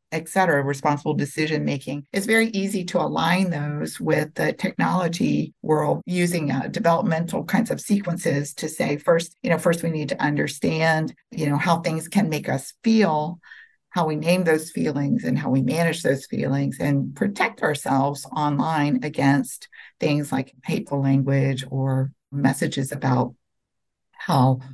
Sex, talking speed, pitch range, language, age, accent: female, 150 wpm, 140-170 Hz, English, 50-69, American